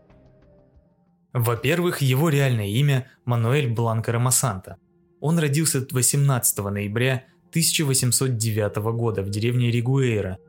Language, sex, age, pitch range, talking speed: Russian, male, 20-39, 110-140 Hz, 95 wpm